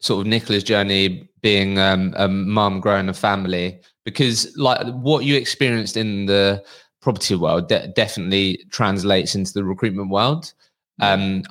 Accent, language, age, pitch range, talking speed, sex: British, English, 20-39, 95-105 Hz, 145 wpm, male